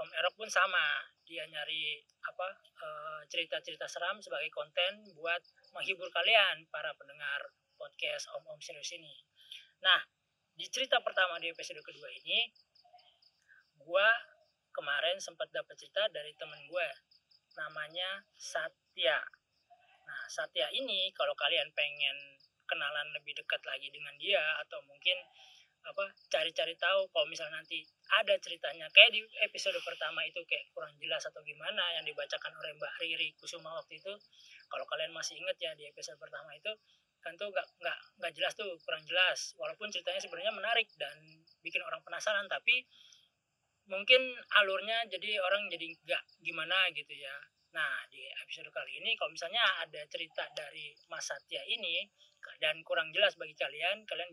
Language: Indonesian